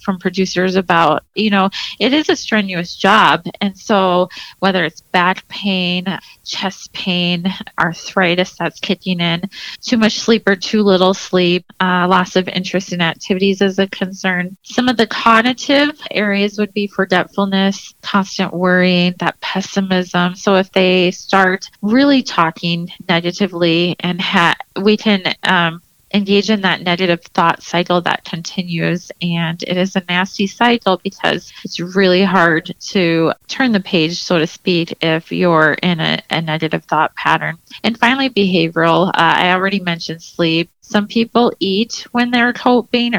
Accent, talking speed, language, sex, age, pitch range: American, 150 wpm, English, female, 30-49, 175-200 Hz